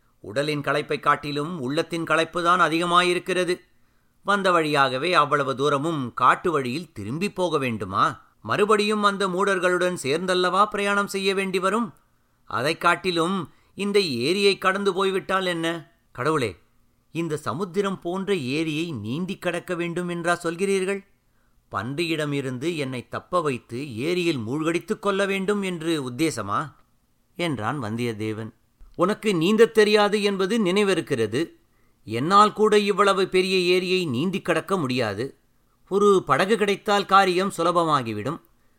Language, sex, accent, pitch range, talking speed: Tamil, male, native, 140-195 Hz, 110 wpm